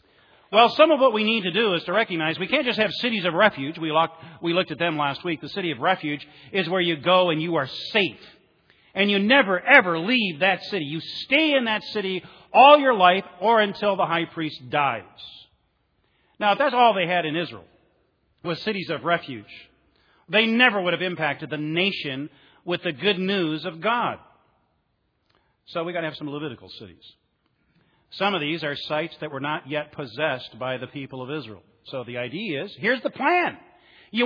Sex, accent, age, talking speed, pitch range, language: male, American, 40-59, 200 wpm, 160-230 Hz, English